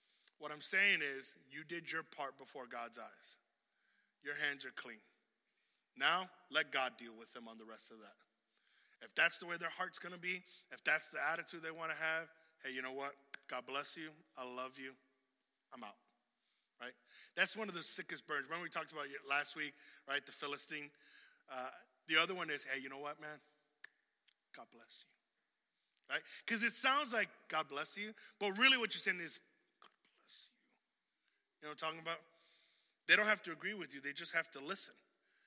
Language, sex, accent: English, male, American